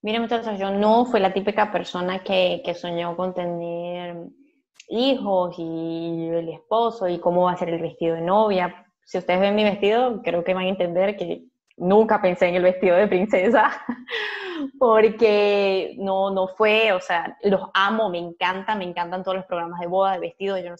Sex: female